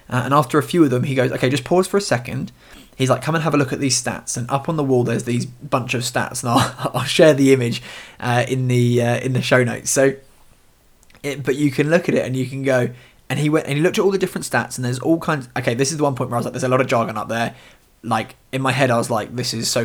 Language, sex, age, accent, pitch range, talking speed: English, male, 20-39, British, 125-145 Hz, 310 wpm